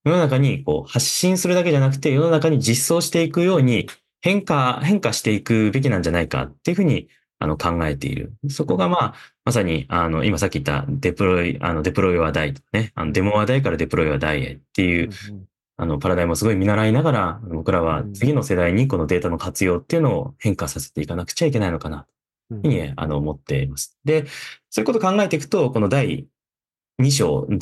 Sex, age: male, 20-39